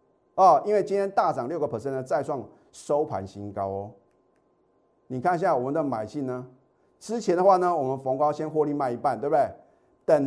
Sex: male